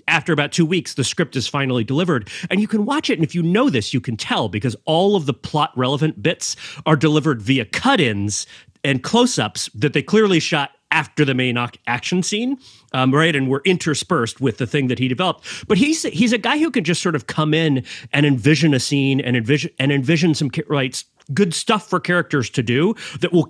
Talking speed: 215 wpm